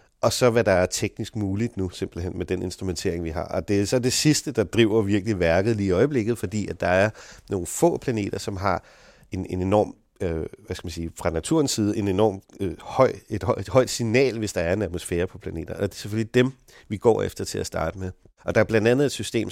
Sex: male